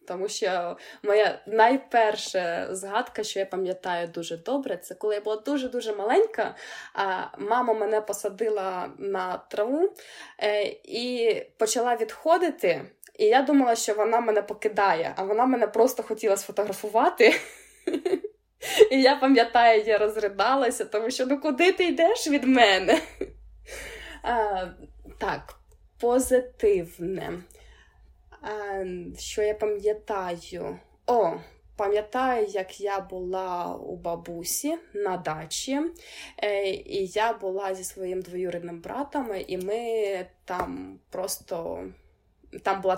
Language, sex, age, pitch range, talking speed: Ukrainian, female, 20-39, 185-260 Hz, 110 wpm